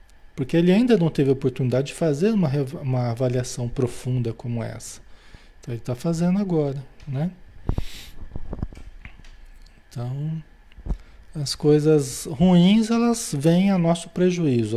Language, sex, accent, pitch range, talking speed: Portuguese, male, Brazilian, 115-165 Hz, 120 wpm